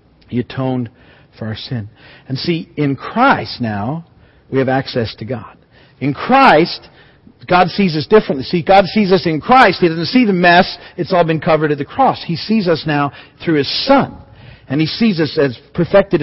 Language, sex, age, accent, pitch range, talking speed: English, male, 50-69, American, 150-205 Hz, 190 wpm